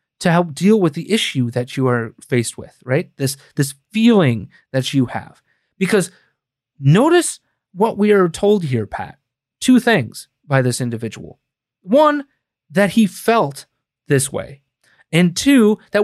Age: 30-49